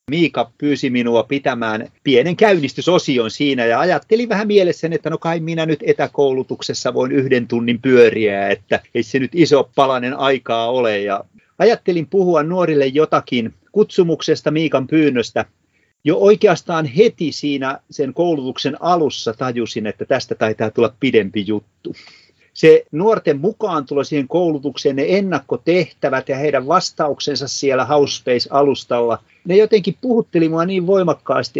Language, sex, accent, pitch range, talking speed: Finnish, male, native, 125-170 Hz, 135 wpm